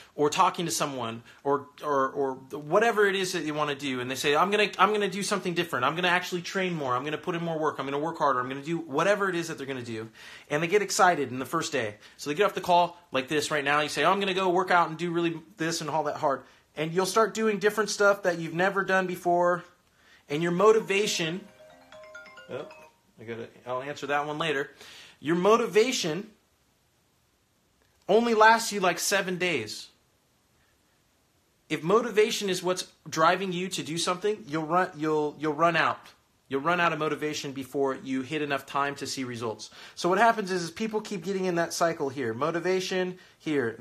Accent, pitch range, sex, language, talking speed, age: American, 150-190 Hz, male, English, 225 wpm, 30-49